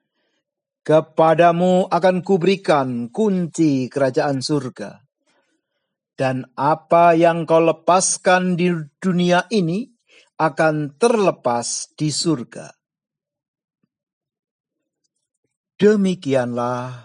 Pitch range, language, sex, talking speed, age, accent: 130-185 Hz, Indonesian, male, 65 wpm, 50-69, native